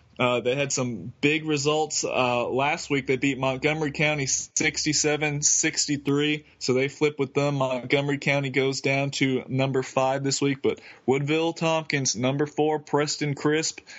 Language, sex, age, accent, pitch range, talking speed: English, male, 20-39, American, 130-150 Hz, 155 wpm